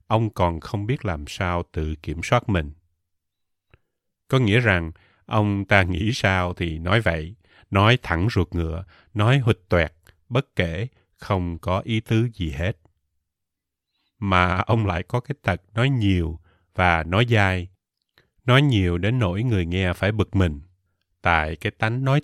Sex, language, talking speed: male, Vietnamese, 160 wpm